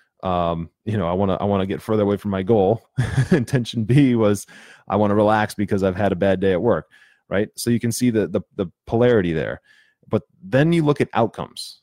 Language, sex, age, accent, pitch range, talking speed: English, male, 30-49, American, 90-110 Hz, 235 wpm